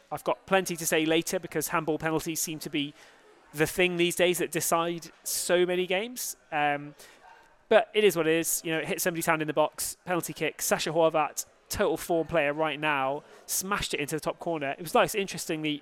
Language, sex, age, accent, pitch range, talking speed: English, male, 20-39, British, 145-175 Hz, 215 wpm